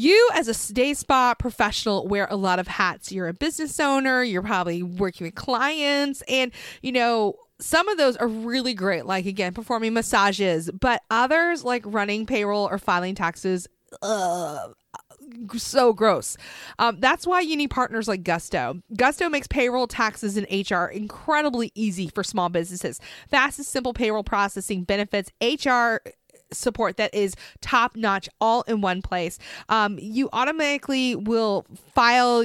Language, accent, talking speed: English, American, 150 wpm